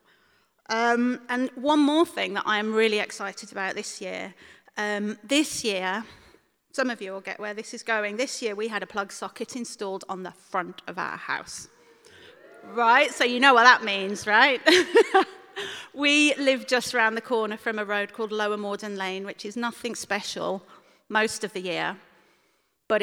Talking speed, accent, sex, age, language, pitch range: 180 wpm, British, female, 30-49, English, 200-260 Hz